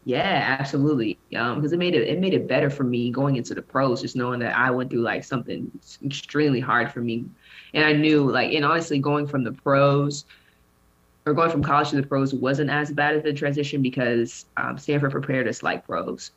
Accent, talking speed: American, 220 wpm